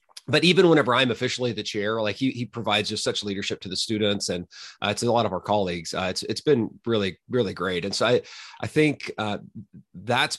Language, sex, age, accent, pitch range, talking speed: English, male, 30-49, American, 105-125 Hz, 225 wpm